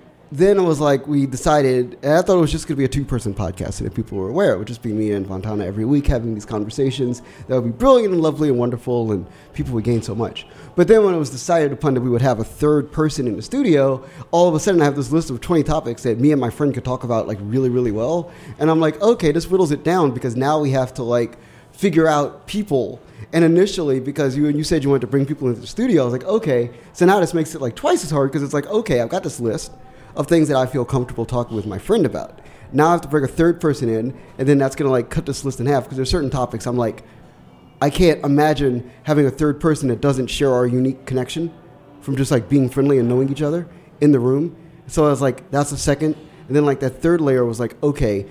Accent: American